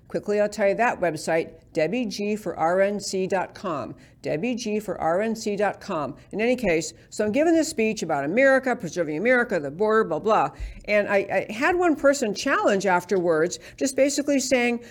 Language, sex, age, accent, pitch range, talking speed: English, female, 60-79, American, 185-255 Hz, 140 wpm